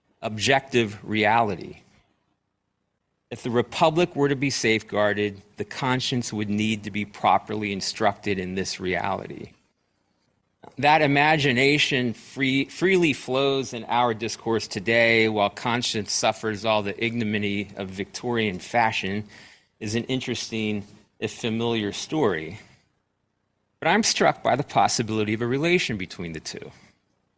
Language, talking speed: English, 120 wpm